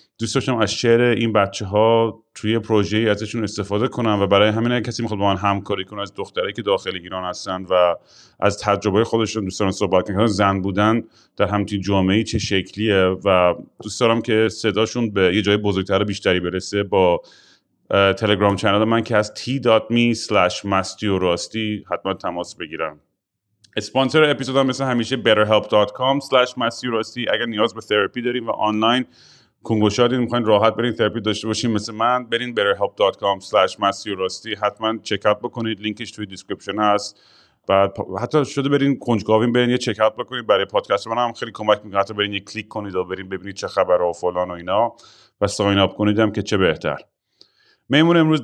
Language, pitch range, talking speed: Persian, 100-115 Hz, 180 wpm